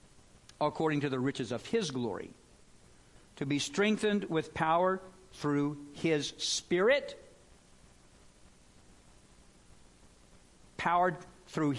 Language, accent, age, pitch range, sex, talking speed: English, American, 60-79, 145-205 Hz, male, 85 wpm